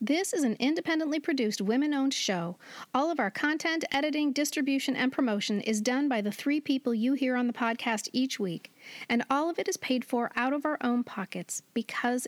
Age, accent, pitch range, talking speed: 40-59, American, 230-285 Hz, 200 wpm